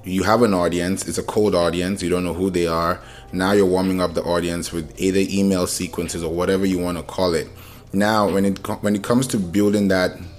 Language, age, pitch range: English, 20-39, 85-95 Hz